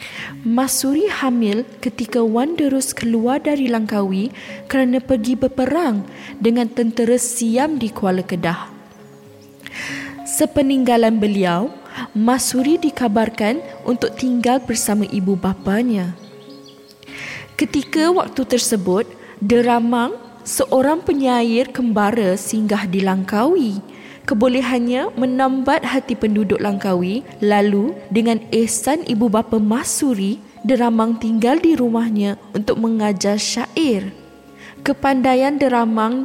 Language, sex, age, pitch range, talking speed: Malay, female, 20-39, 205-255 Hz, 90 wpm